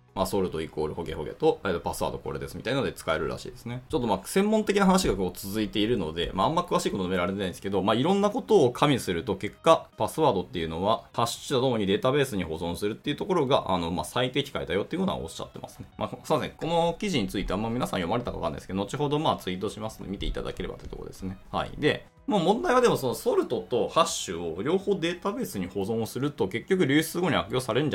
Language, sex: Japanese, male